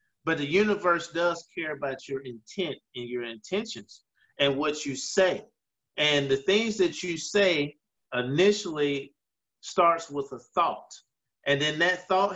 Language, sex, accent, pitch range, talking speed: English, male, American, 140-185 Hz, 145 wpm